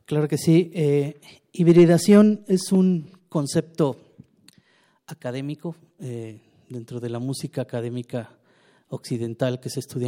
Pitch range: 125-150 Hz